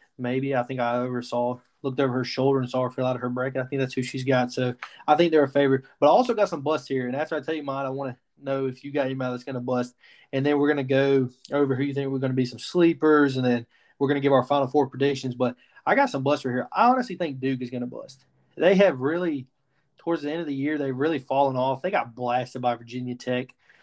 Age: 20-39